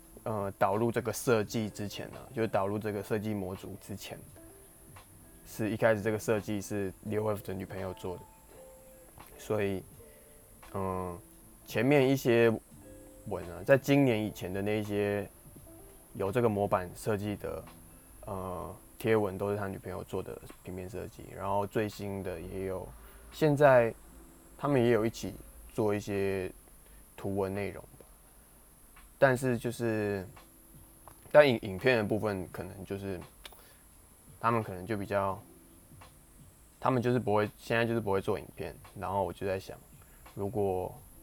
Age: 20-39